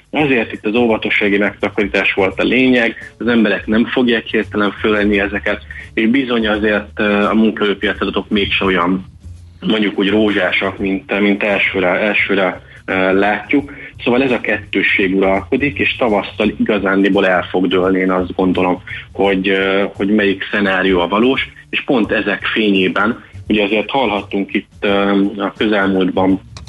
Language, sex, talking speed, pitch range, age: Hungarian, male, 135 wpm, 95-105 Hz, 30-49